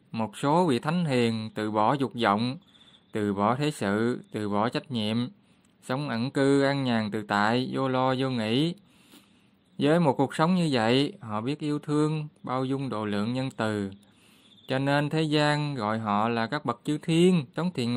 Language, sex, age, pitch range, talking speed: Vietnamese, male, 20-39, 110-145 Hz, 190 wpm